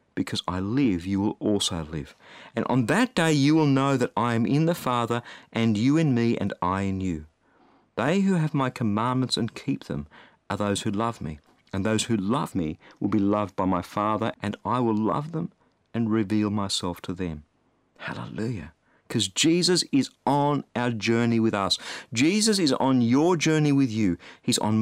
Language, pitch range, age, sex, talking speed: English, 100-140 Hz, 50-69, male, 195 wpm